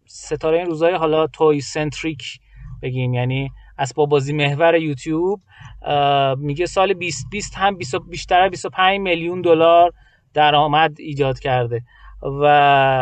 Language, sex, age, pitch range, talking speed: Persian, male, 30-49, 135-185 Hz, 115 wpm